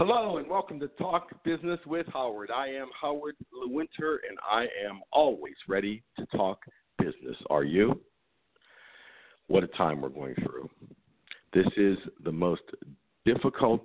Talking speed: 145 wpm